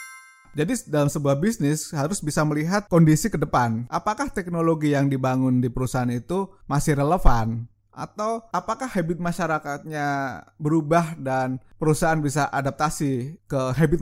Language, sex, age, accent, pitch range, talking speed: Indonesian, male, 20-39, native, 130-175 Hz, 130 wpm